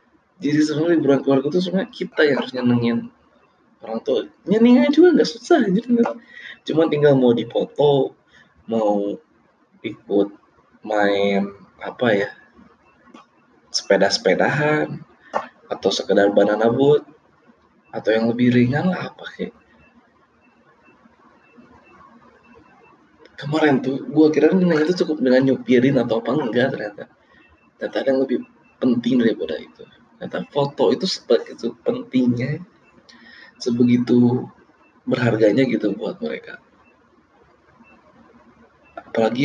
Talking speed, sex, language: 100 wpm, male, Indonesian